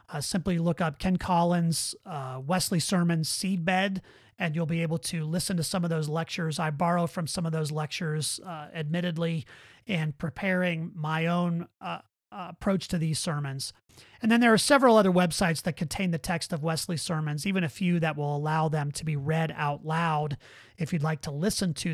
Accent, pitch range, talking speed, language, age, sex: American, 150-190 Hz, 195 wpm, English, 30-49, male